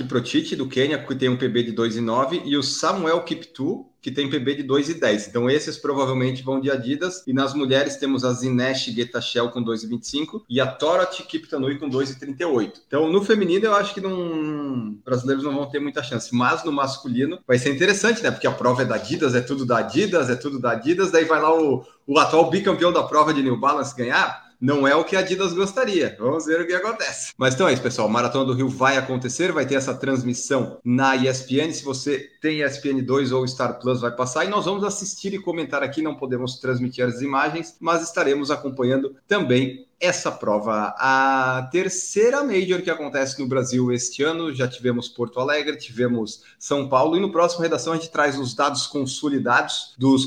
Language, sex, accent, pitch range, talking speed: Portuguese, male, Brazilian, 130-160 Hz, 200 wpm